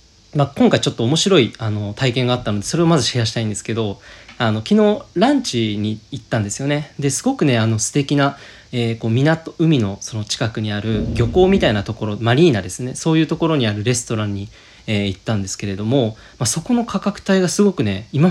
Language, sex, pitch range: Japanese, male, 110-175 Hz